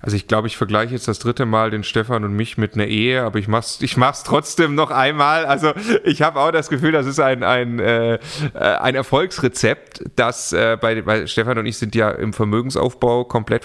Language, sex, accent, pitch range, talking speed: German, male, German, 105-125 Hz, 220 wpm